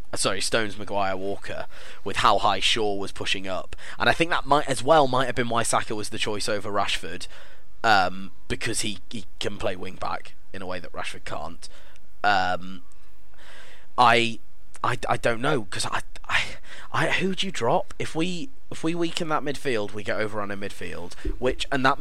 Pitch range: 100-130 Hz